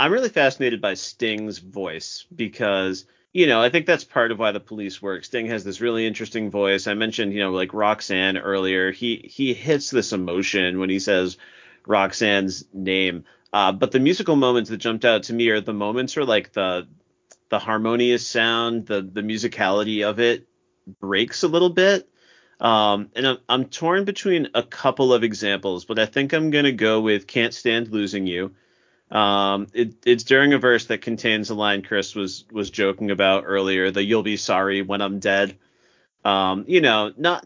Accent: American